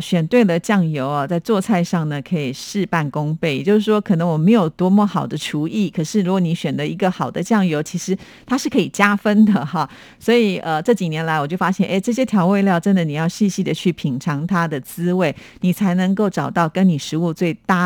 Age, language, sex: 50-69, Chinese, female